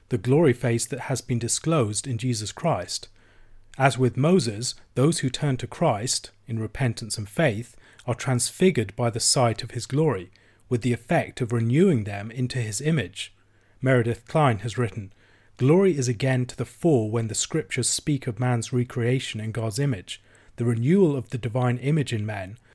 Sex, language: male, English